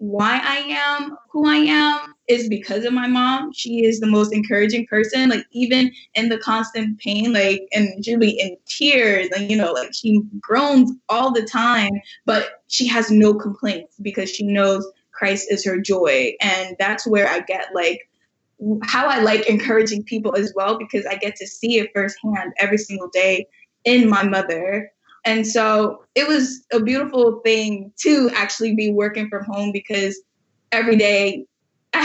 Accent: American